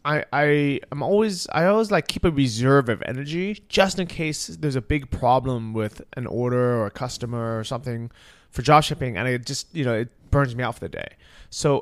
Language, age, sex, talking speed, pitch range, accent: English, 20-39, male, 215 wpm, 115-145 Hz, American